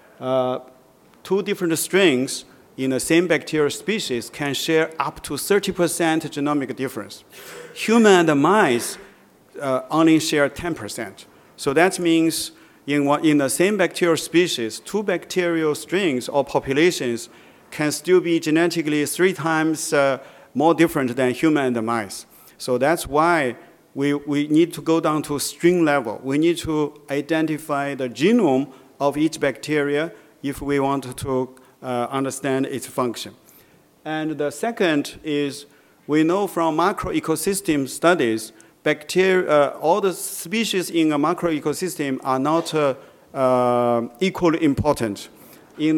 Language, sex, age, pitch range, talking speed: English, male, 50-69, 135-165 Hz, 140 wpm